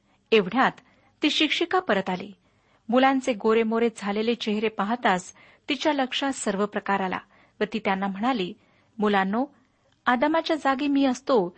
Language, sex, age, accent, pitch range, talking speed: Marathi, female, 40-59, native, 205-265 Hz, 125 wpm